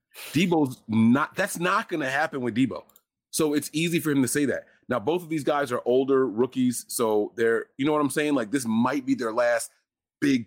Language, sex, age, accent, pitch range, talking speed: English, male, 30-49, American, 110-145 Hz, 225 wpm